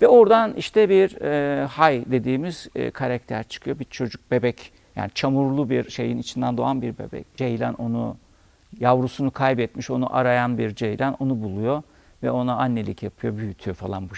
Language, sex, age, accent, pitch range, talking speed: Turkish, male, 50-69, native, 115-150 Hz, 160 wpm